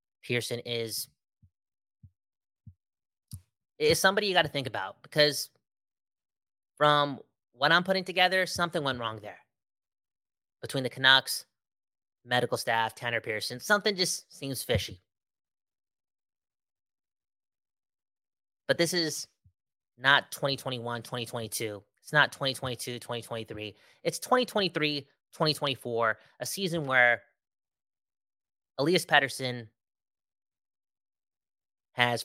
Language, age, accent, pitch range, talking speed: English, 20-39, American, 105-135 Hz, 85 wpm